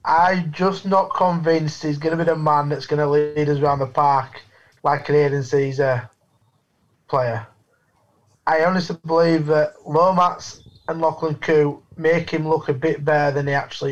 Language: English